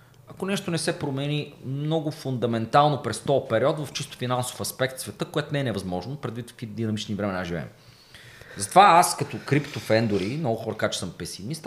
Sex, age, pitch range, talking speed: male, 30-49, 110-145 Hz, 175 wpm